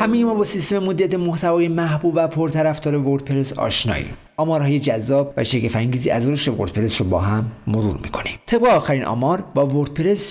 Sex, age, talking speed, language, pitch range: male, 50-69, 175 wpm, Persian, 120-165 Hz